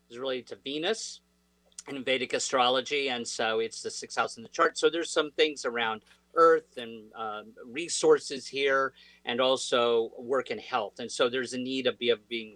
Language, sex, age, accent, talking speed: English, male, 40-59, American, 190 wpm